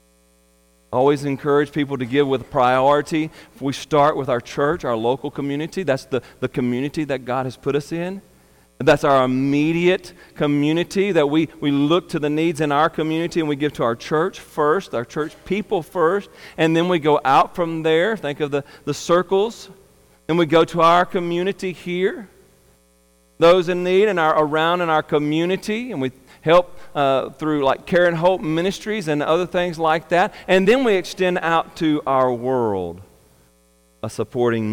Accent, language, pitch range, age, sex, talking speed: American, English, 120-170 Hz, 40-59, male, 180 wpm